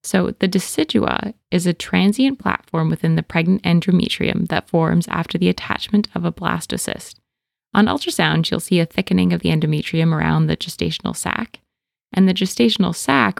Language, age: English, 20-39